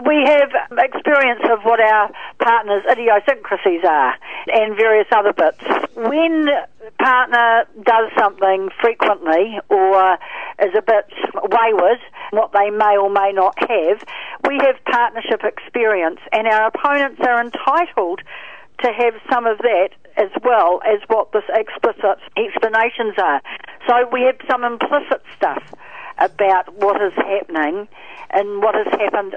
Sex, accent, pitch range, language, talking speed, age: female, Australian, 200-275 Hz, English, 135 wpm, 60-79